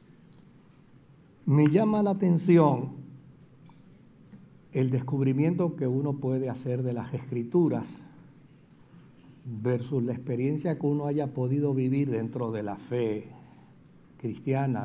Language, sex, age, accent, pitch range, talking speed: Spanish, male, 60-79, American, 125-155 Hz, 105 wpm